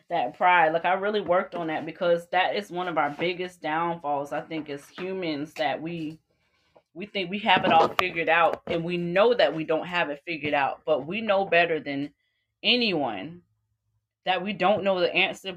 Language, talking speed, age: English, 200 wpm, 20-39